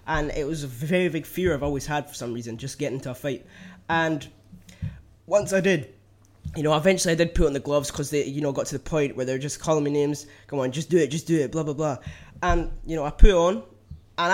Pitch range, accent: 135-165 Hz, British